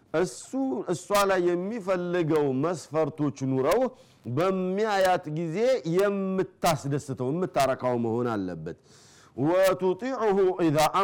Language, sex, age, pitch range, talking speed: Amharic, male, 40-59, 135-180 Hz, 70 wpm